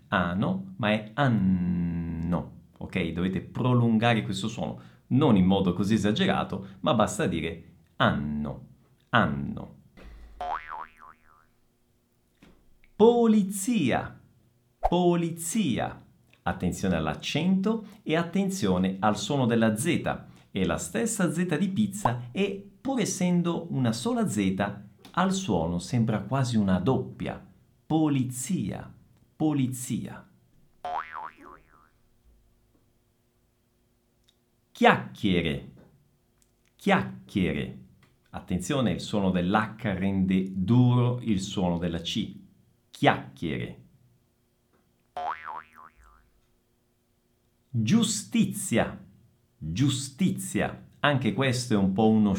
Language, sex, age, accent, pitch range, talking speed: Italian, male, 50-69, native, 85-135 Hz, 80 wpm